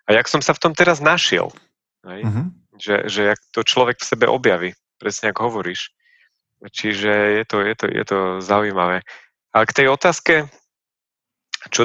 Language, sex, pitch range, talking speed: Slovak, male, 100-125 Hz, 145 wpm